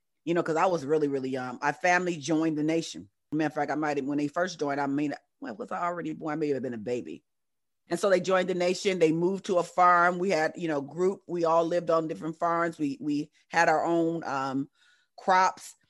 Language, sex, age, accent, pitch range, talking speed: English, female, 40-59, American, 150-180 Hz, 245 wpm